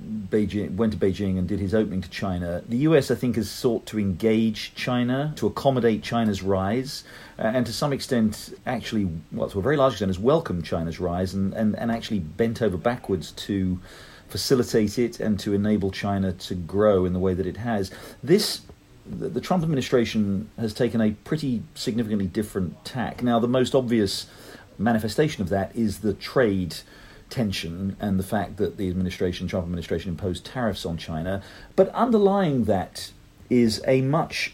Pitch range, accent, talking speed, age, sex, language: 95-120 Hz, British, 175 wpm, 40-59, male, English